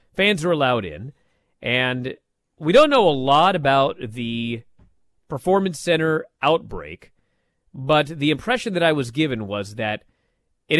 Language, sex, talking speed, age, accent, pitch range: English, male, 140 wpm, 40-59, American, 125-180 Hz